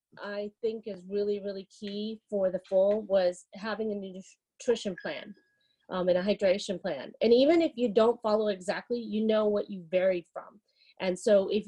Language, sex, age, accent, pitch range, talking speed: English, female, 30-49, American, 185-230 Hz, 180 wpm